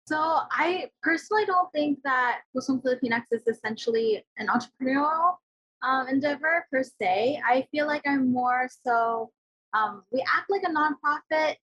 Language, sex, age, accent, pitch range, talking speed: English, female, 20-39, American, 230-295 Hz, 145 wpm